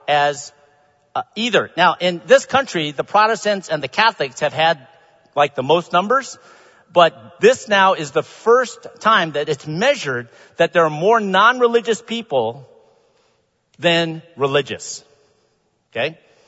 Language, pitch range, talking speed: English, 155-240 Hz, 135 wpm